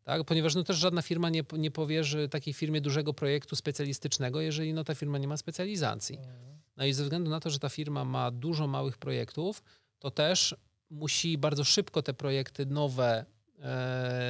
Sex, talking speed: male, 180 wpm